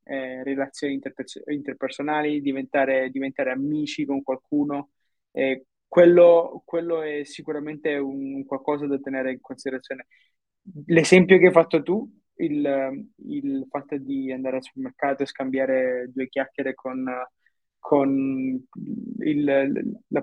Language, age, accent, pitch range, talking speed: Italian, 20-39, native, 135-190 Hz, 120 wpm